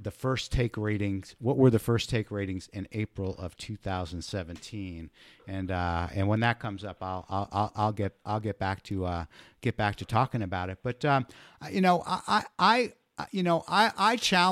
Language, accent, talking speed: English, American, 185 wpm